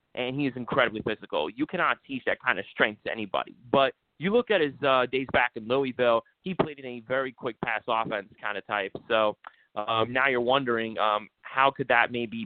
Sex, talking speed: male, 215 wpm